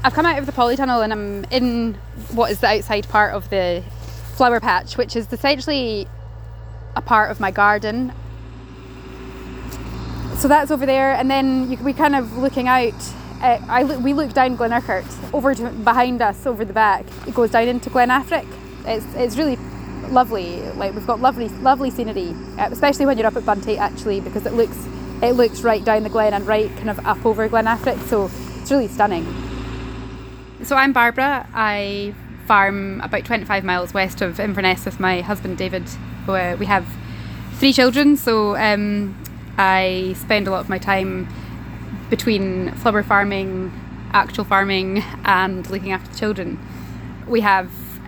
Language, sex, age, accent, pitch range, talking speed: English, female, 10-29, British, 190-240 Hz, 170 wpm